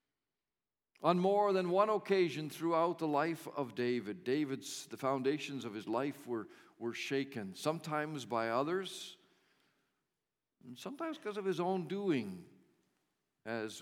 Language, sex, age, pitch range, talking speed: English, male, 50-69, 125-175 Hz, 130 wpm